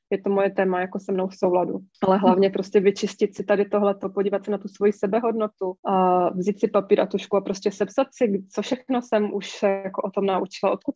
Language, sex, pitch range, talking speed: Czech, female, 190-220 Hz, 225 wpm